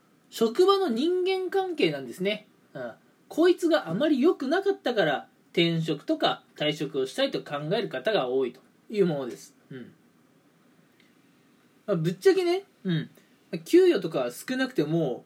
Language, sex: Japanese, male